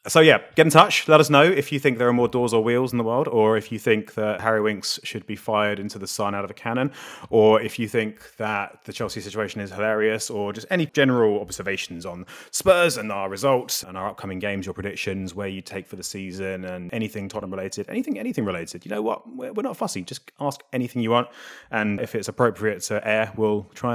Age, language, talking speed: 30-49, English, 240 wpm